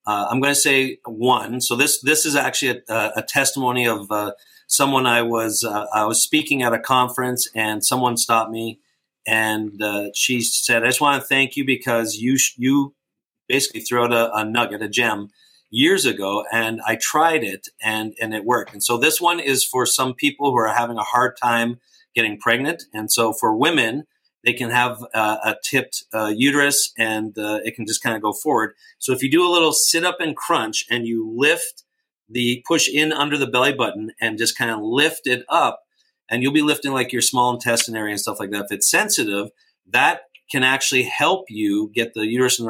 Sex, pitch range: male, 110-140 Hz